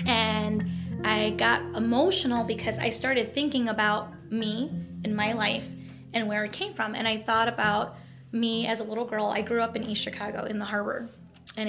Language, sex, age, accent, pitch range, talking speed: English, female, 20-39, American, 210-235 Hz, 190 wpm